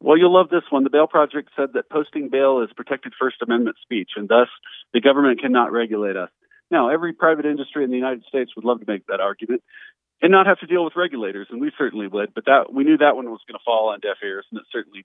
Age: 40-59